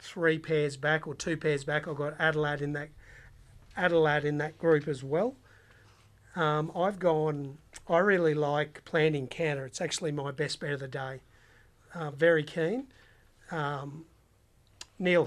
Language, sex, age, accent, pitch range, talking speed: English, male, 40-59, Australian, 145-165 Hz, 155 wpm